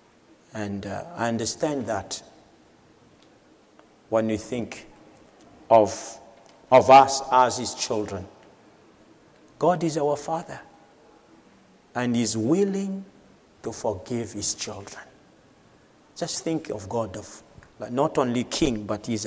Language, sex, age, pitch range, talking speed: English, male, 50-69, 110-140 Hz, 110 wpm